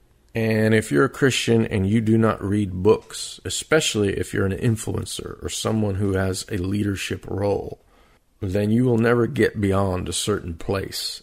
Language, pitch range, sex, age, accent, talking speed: English, 95-110 Hz, male, 50-69, American, 170 wpm